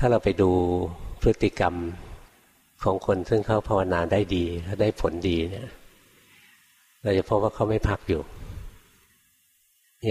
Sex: male